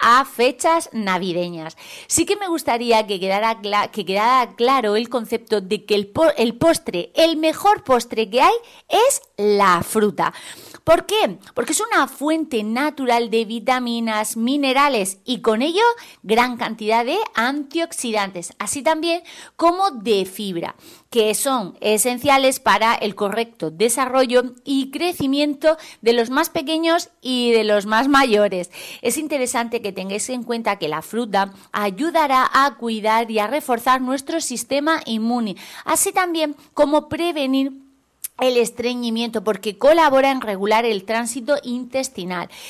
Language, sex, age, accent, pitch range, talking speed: Spanish, female, 30-49, Spanish, 215-310 Hz, 135 wpm